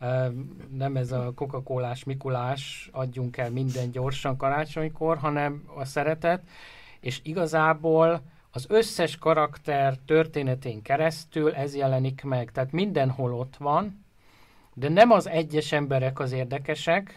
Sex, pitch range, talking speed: male, 130-155 Hz, 120 wpm